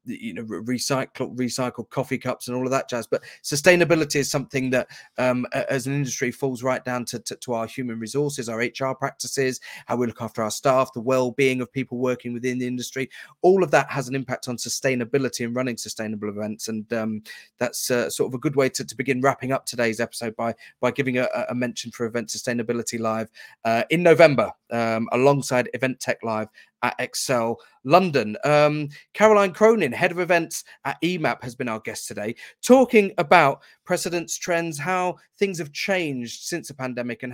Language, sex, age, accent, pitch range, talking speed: English, male, 30-49, British, 120-145 Hz, 195 wpm